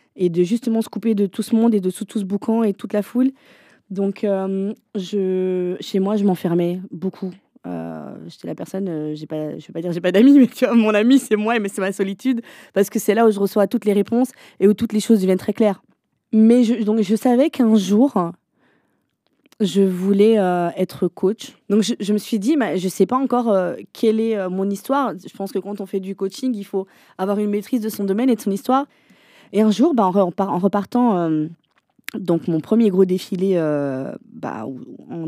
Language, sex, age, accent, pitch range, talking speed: French, female, 20-39, French, 175-225 Hz, 235 wpm